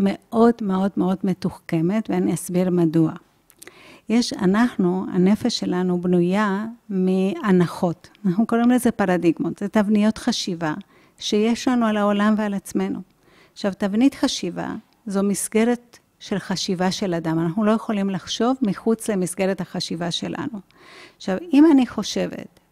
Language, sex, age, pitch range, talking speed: Hebrew, female, 50-69, 180-225 Hz, 125 wpm